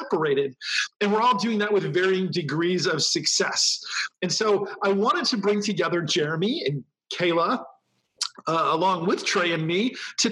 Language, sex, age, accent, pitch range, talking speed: English, male, 40-59, American, 175-225 Hz, 165 wpm